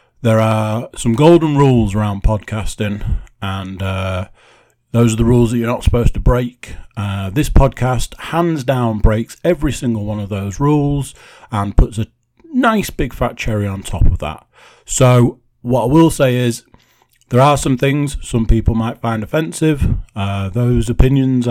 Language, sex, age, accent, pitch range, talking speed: English, male, 30-49, British, 105-135 Hz, 165 wpm